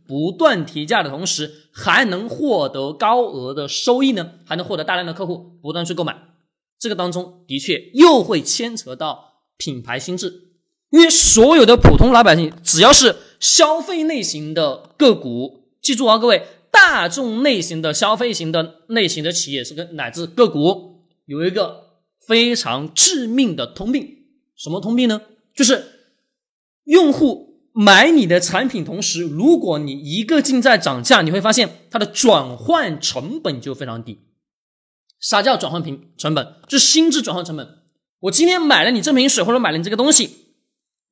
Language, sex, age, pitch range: Chinese, male, 20-39, 165-255 Hz